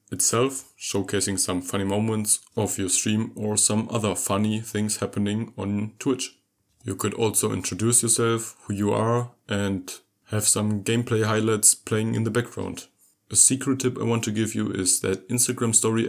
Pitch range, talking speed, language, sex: 100-115 Hz, 170 wpm, English, male